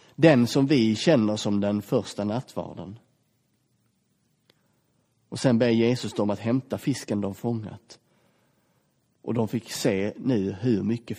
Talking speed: 135 wpm